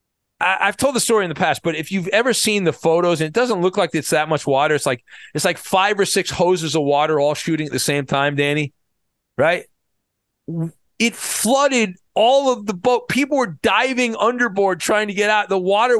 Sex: male